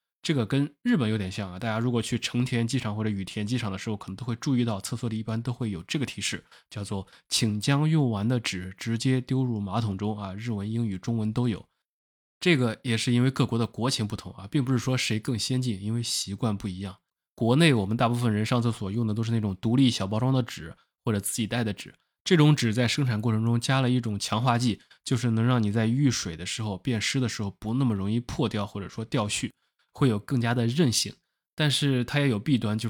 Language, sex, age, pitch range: Chinese, male, 20-39, 105-125 Hz